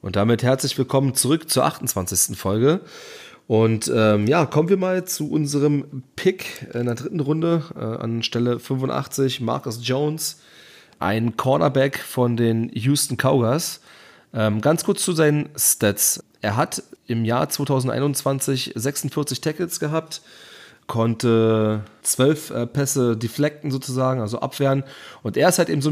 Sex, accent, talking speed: male, German, 140 wpm